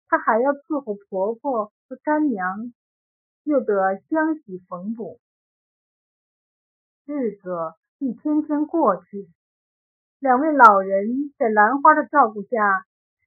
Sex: female